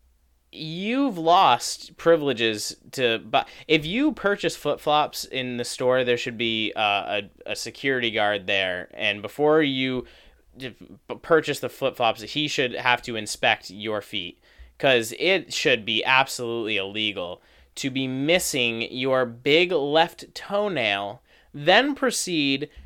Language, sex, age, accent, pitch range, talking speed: English, male, 30-49, American, 105-155 Hz, 125 wpm